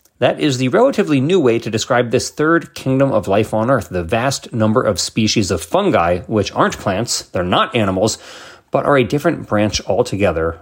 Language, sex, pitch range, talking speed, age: English, male, 110-160 Hz, 185 wpm, 30-49